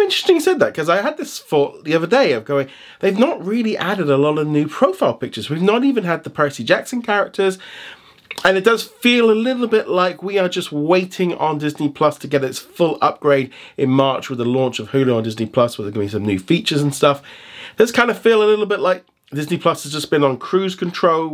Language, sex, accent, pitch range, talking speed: English, male, British, 140-185 Hz, 240 wpm